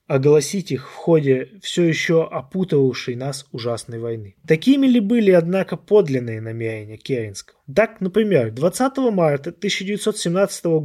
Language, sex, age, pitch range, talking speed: Russian, male, 20-39, 140-190 Hz, 120 wpm